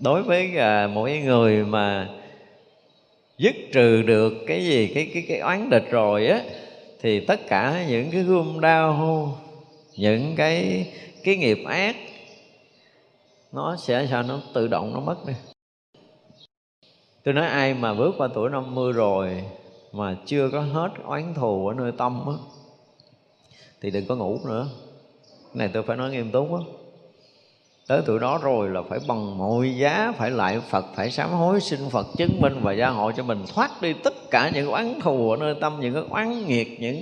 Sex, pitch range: male, 115-170 Hz